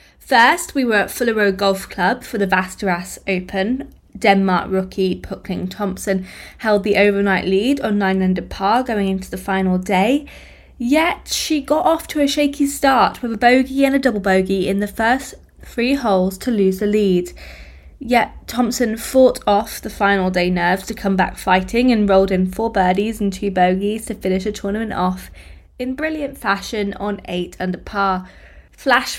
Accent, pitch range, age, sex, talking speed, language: British, 190-245 Hz, 20-39, female, 175 wpm, English